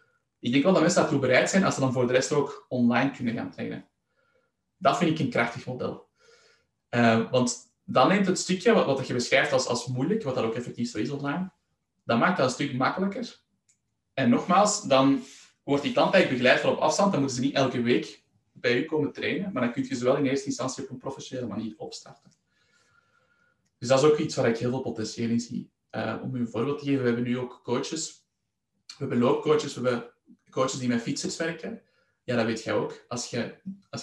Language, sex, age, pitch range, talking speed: Dutch, male, 20-39, 125-180 Hz, 220 wpm